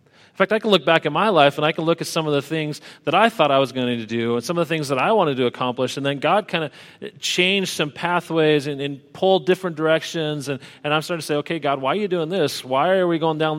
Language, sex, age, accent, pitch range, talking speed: English, male, 40-59, American, 125-165 Hz, 295 wpm